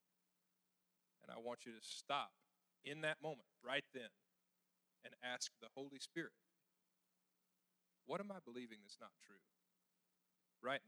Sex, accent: male, American